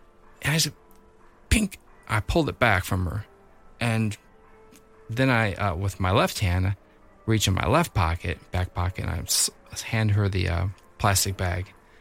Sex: male